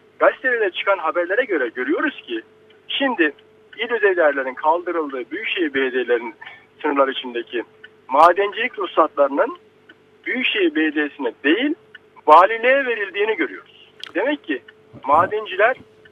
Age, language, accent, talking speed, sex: 50-69, Turkish, native, 95 wpm, male